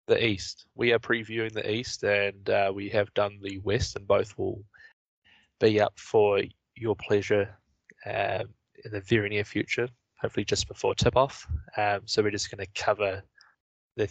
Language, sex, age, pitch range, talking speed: English, male, 20-39, 100-110 Hz, 175 wpm